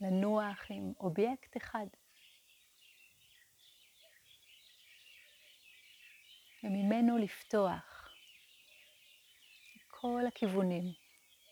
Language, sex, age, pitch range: Hebrew, female, 30-49, 190-240 Hz